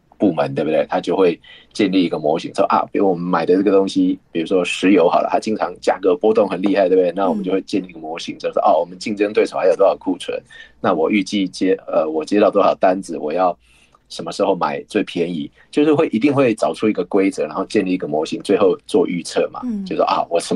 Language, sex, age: Chinese, male, 30-49